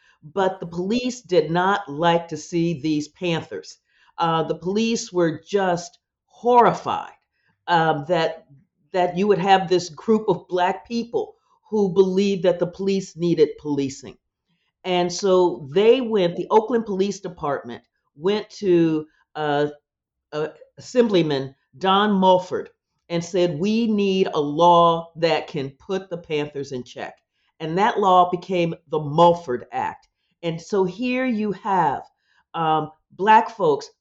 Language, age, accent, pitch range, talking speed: English, 50-69, American, 165-215 Hz, 135 wpm